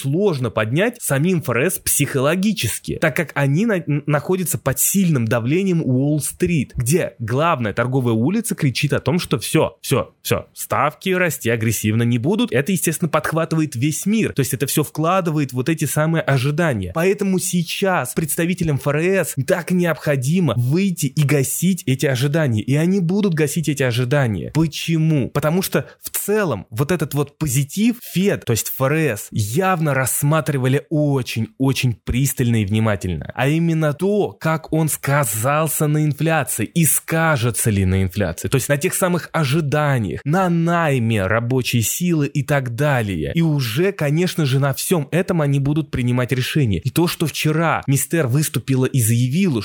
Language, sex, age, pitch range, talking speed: Russian, male, 20-39, 125-165 Hz, 150 wpm